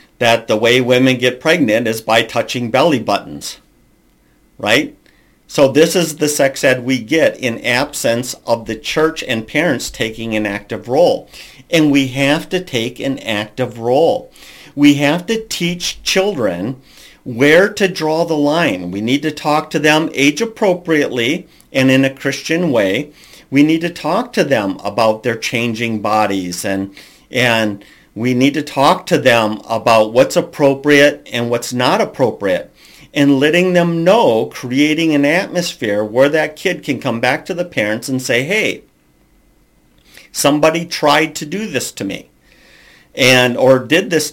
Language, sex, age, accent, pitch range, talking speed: English, male, 50-69, American, 120-160 Hz, 160 wpm